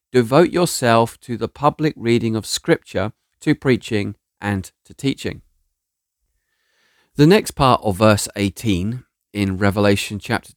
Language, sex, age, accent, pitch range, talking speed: English, male, 40-59, British, 110-140 Hz, 125 wpm